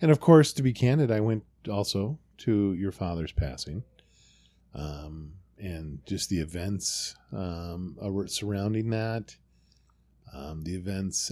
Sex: male